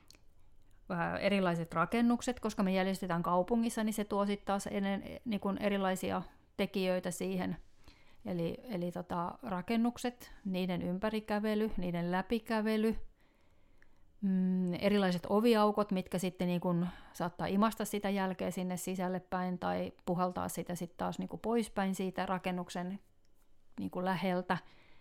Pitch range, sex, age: 180-205 Hz, female, 30-49